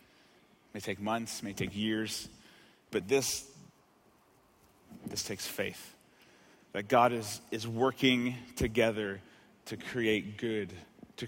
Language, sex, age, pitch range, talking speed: English, male, 30-49, 110-135 Hz, 110 wpm